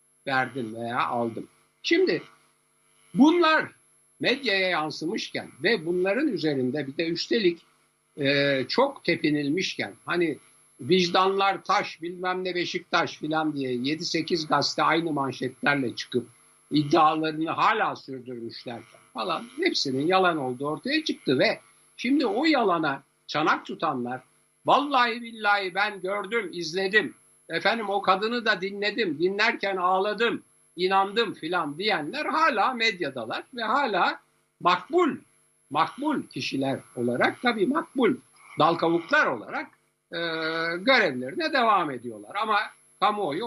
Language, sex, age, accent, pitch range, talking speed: Turkish, male, 60-79, native, 150-235 Hz, 105 wpm